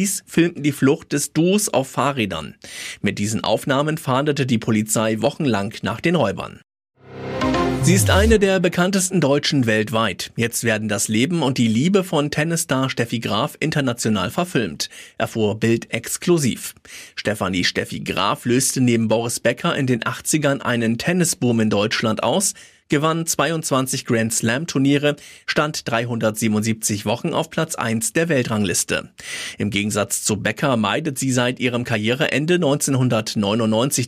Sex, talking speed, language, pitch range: male, 135 wpm, German, 115-155 Hz